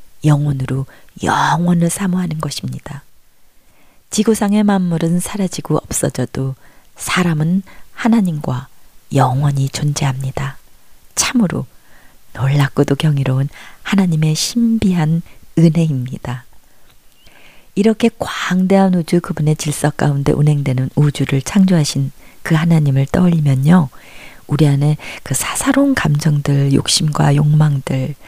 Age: 40-59